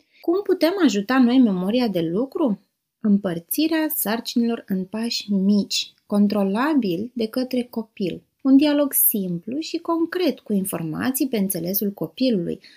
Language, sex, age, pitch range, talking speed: Romanian, female, 20-39, 190-260 Hz, 120 wpm